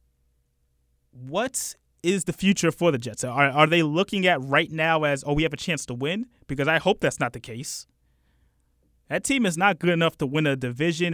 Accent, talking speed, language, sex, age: American, 210 wpm, English, male, 30-49